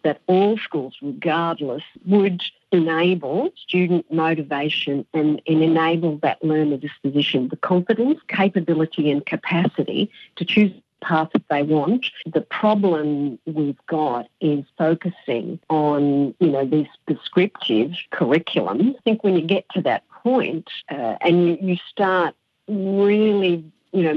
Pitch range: 150-195 Hz